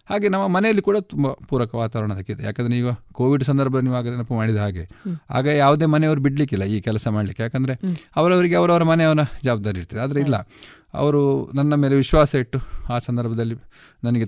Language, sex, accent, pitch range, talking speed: Kannada, male, native, 110-150 Hz, 170 wpm